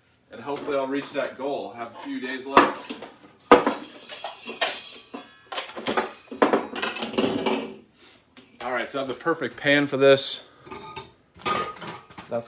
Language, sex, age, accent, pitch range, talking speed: English, male, 30-49, American, 115-145 Hz, 110 wpm